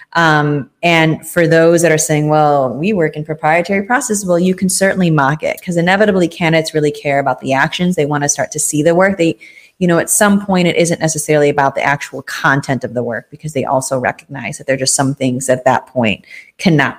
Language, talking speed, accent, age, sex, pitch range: English, 230 wpm, American, 30-49, female, 145-175 Hz